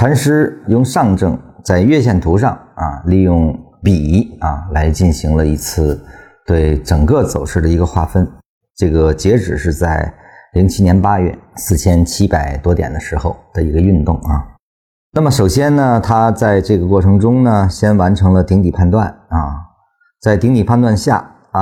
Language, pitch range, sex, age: Chinese, 80-105 Hz, male, 50-69